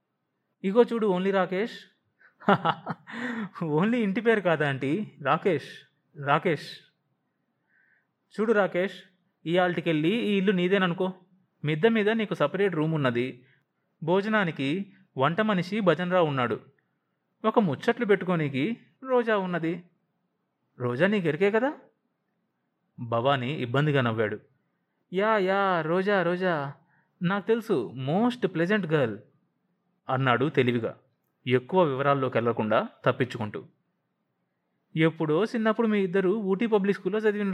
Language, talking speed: Telugu, 100 wpm